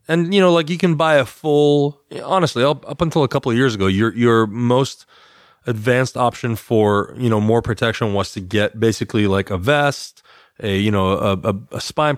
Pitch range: 100-125 Hz